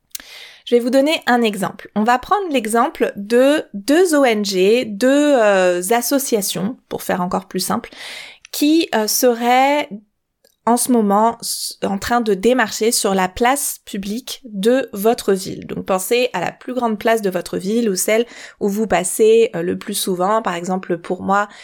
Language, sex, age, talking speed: French, female, 20-39, 170 wpm